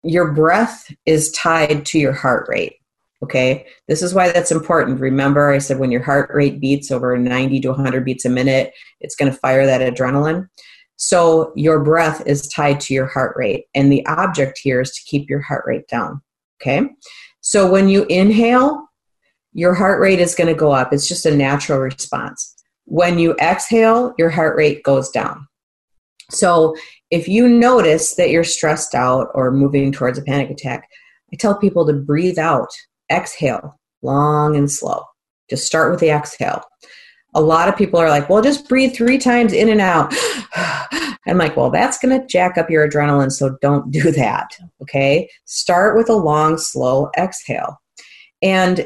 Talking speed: 180 wpm